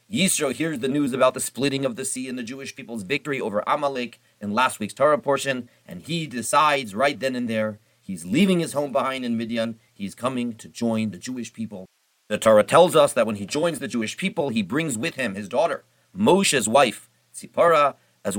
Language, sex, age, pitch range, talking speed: English, male, 40-59, 115-150 Hz, 210 wpm